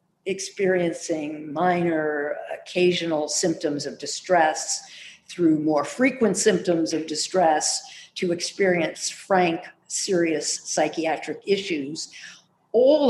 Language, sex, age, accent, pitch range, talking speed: English, female, 50-69, American, 160-190 Hz, 85 wpm